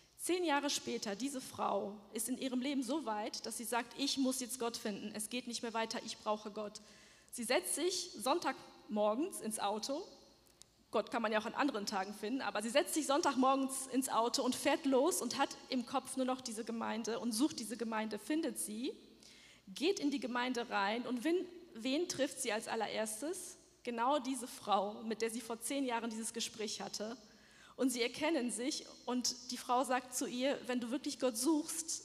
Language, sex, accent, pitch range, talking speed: German, female, German, 225-270 Hz, 195 wpm